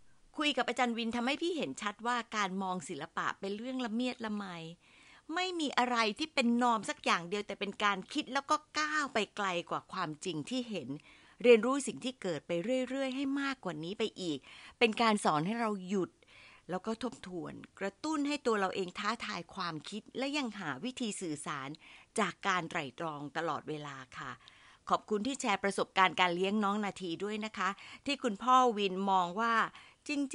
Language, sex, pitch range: Thai, female, 180-250 Hz